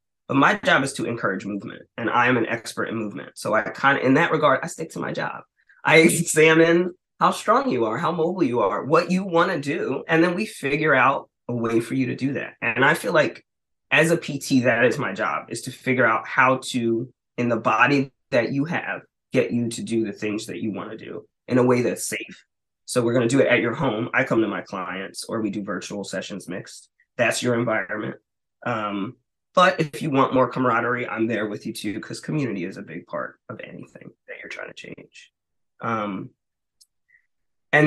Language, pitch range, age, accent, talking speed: English, 115-150 Hz, 20-39, American, 225 wpm